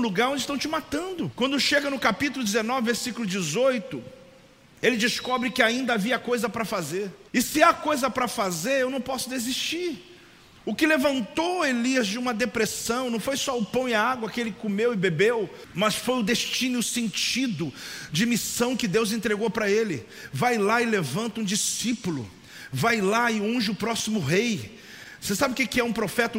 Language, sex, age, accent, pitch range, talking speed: Portuguese, male, 40-59, Brazilian, 200-245 Hz, 190 wpm